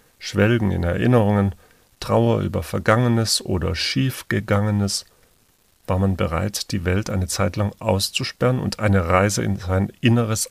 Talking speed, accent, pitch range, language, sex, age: 130 wpm, German, 95-115 Hz, German, male, 40-59